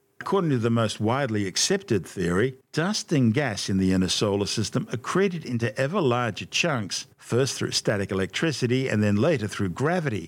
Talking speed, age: 170 wpm, 50-69